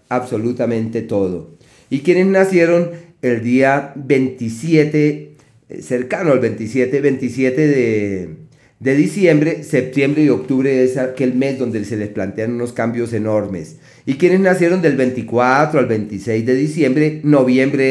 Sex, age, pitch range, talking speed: male, 40-59, 120-155 Hz, 125 wpm